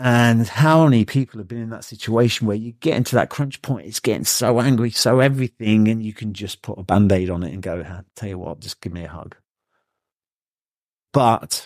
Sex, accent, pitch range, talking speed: male, British, 95-120 Hz, 220 wpm